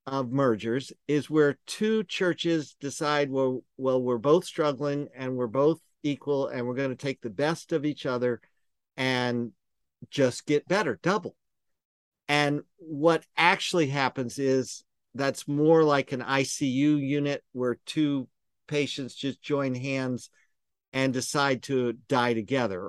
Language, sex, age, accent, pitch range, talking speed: English, male, 50-69, American, 125-160 Hz, 140 wpm